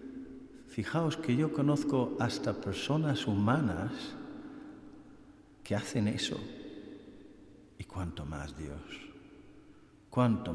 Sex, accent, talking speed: male, Spanish, 85 wpm